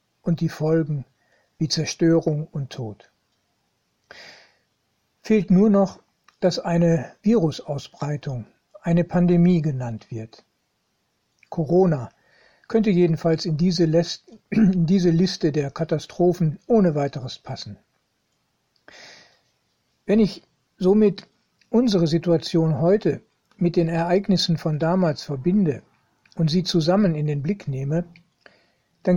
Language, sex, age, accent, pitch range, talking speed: German, male, 60-79, German, 155-180 Hz, 100 wpm